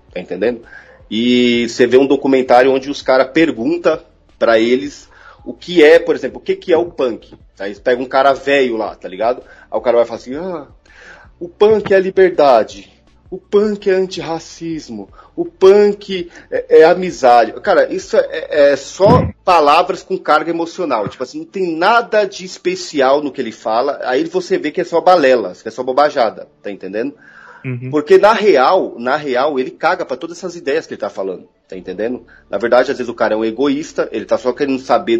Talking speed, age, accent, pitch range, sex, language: 200 wpm, 30-49, Brazilian, 120-185 Hz, male, Portuguese